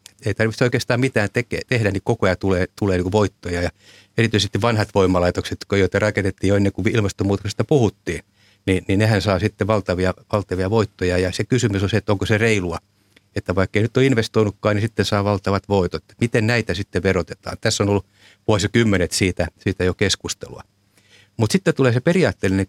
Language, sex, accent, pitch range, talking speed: Finnish, male, native, 95-110 Hz, 185 wpm